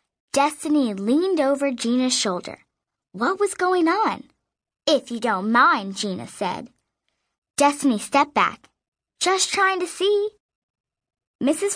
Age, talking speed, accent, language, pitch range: 10-29, 115 wpm, American, English, 220-320 Hz